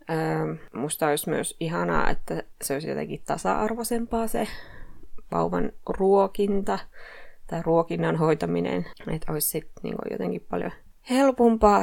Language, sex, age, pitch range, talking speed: Finnish, female, 20-39, 150-195 Hz, 110 wpm